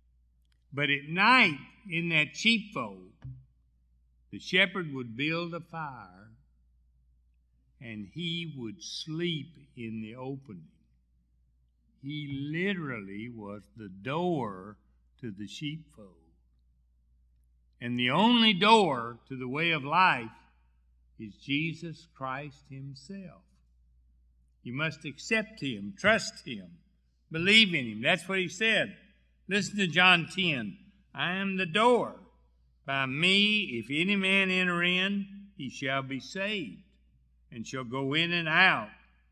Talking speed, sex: 120 wpm, male